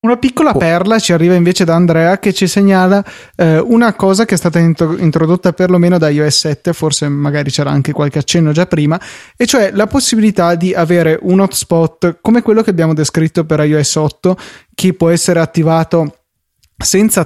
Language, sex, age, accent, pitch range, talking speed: Italian, male, 20-39, native, 155-190 Hz, 175 wpm